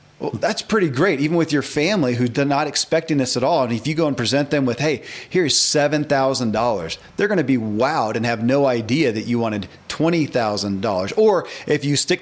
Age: 40-59